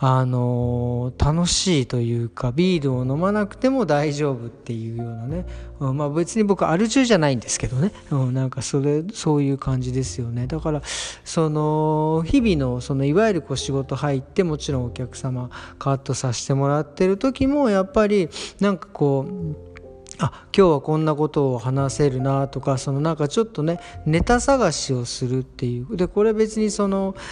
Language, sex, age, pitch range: Japanese, male, 40-59, 130-190 Hz